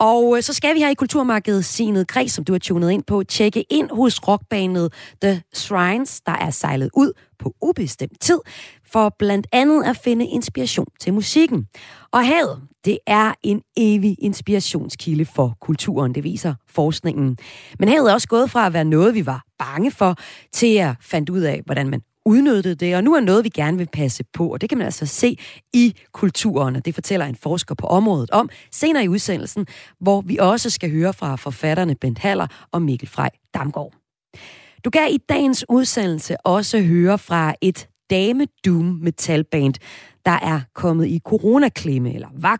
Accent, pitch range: native, 155-220 Hz